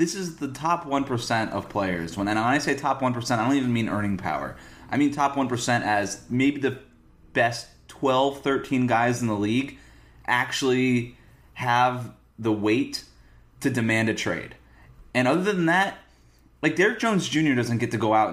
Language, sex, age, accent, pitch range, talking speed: English, male, 30-49, American, 110-155 Hz, 180 wpm